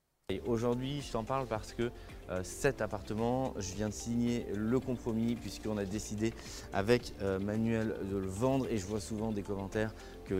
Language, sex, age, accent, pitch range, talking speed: French, male, 20-39, French, 105-125 Hz, 185 wpm